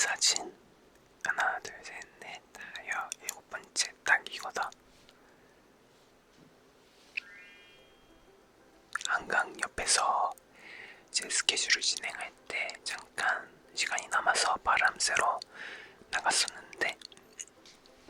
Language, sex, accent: Korean, male, native